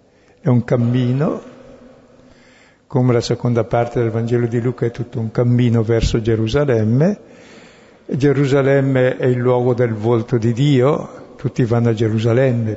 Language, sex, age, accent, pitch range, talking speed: Italian, male, 60-79, native, 115-135 Hz, 135 wpm